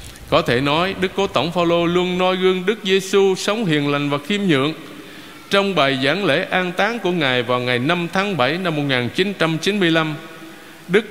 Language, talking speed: Vietnamese, 185 wpm